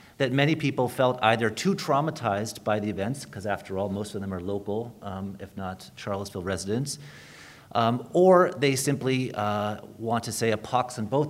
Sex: male